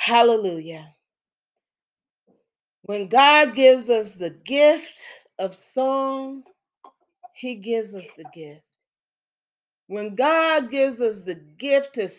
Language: English